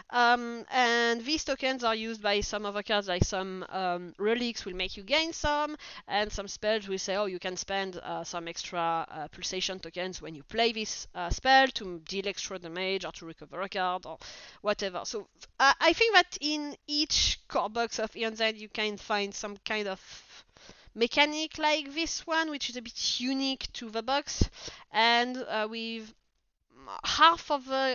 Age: 30-49